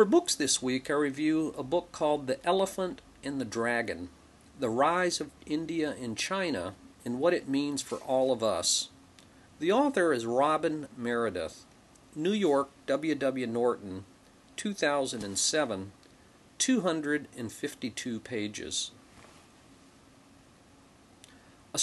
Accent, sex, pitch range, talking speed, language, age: American, male, 125-165 Hz, 115 wpm, English, 50-69